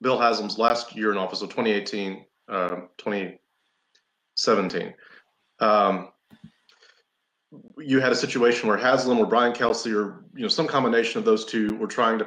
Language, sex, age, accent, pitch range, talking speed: English, male, 30-49, American, 100-120 Hz, 150 wpm